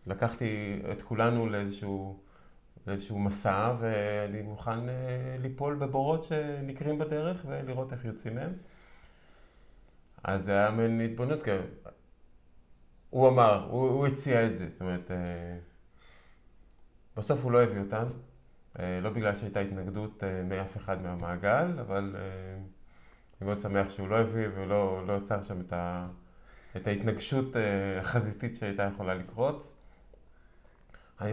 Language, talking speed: Hebrew, 130 wpm